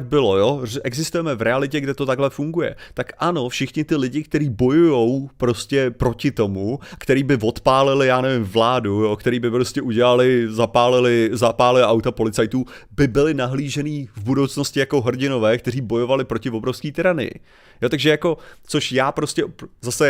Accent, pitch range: native, 115-140 Hz